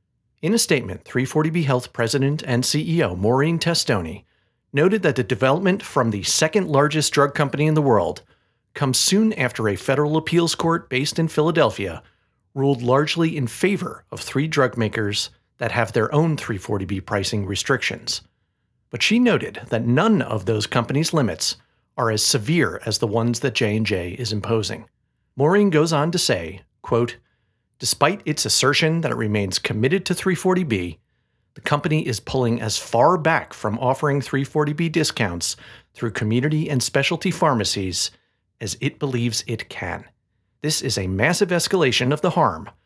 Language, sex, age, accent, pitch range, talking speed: English, male, 40-59, American, 110-155 Hz, 155 wpm